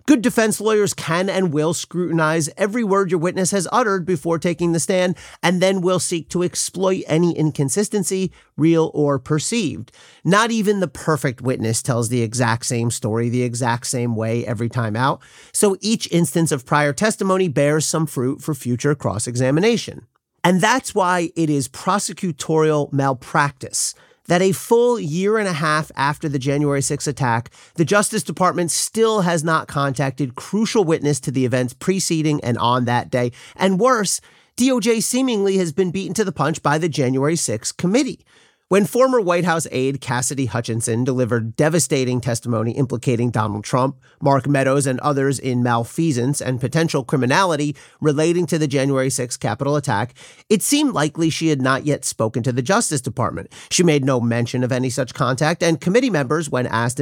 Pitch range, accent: 130-185 Hz, American